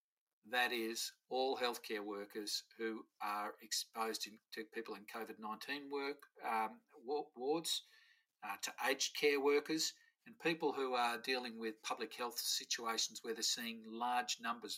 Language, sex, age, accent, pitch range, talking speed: English, male, 50-69, Australian, 110-145 Hz, 140 wpm